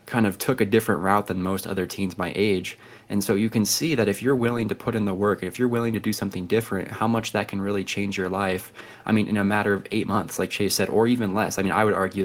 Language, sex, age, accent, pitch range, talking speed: English, male, 20-39, American, 95-110 Hz, 295 wpm